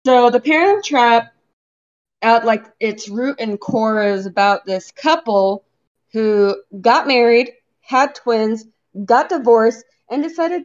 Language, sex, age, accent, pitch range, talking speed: English, female, 20-39, American, 200-245 Hz, 130 wpm